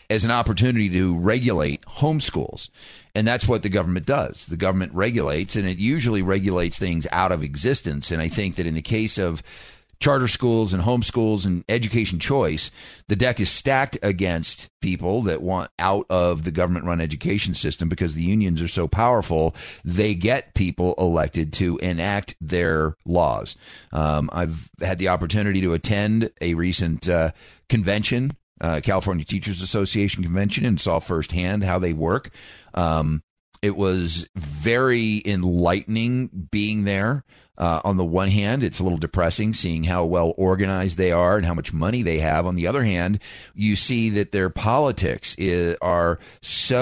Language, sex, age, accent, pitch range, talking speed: English, male, 40-59, American, 85-110 Hz, 165 wpm